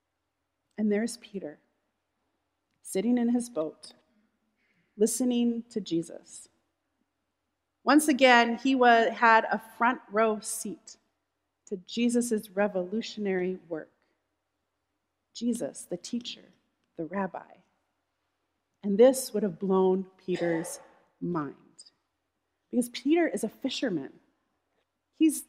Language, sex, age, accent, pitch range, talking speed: English, female, 40-59, American, 195-270 Hz, 95 wpm